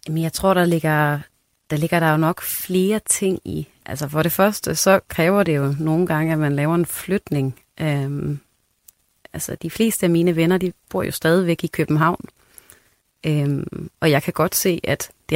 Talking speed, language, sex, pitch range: 190 wpm, Danish, female, 150-185 Hz